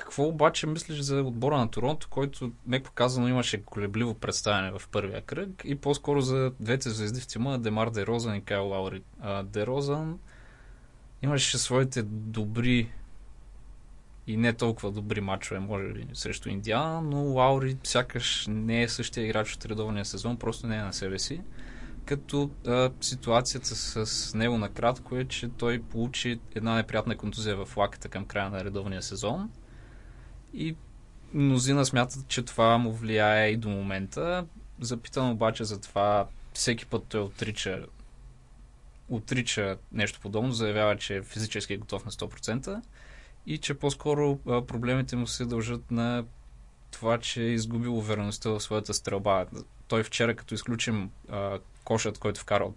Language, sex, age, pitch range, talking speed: Bulgarian, male, 20-39, 105-125 Hz, 150 wpm